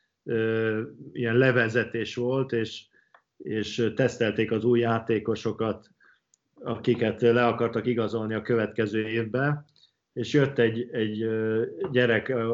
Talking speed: 100 wpm